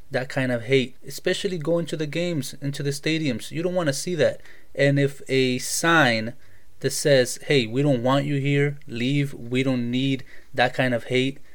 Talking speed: 195 wpm